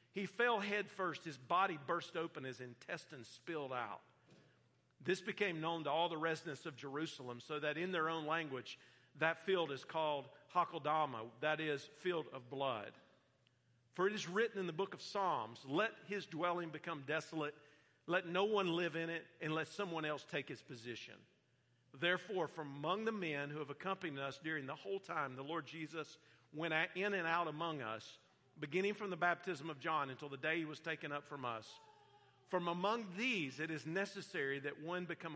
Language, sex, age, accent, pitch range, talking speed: English, male, 50-69, American, 135-175 Hz, 185 wpm